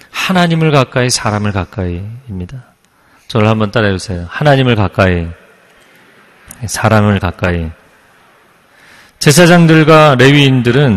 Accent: native